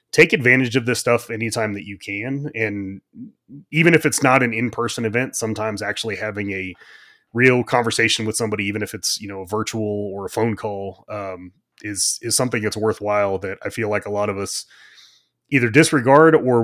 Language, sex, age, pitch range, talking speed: English, male, 30-49, 100-115 Hz, 190 wpm